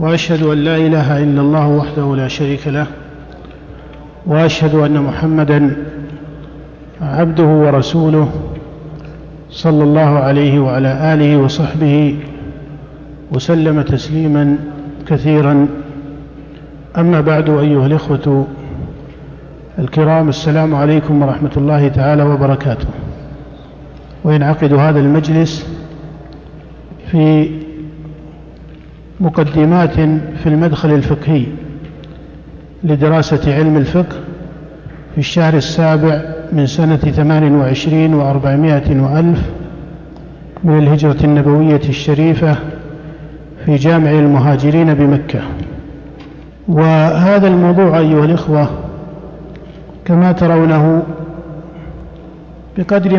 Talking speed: 80 wpm